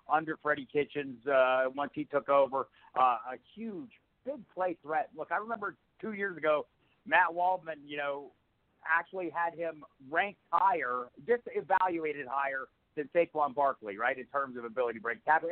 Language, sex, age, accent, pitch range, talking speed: English, male, 50-69, American, 135-170 Hz, 165 wpm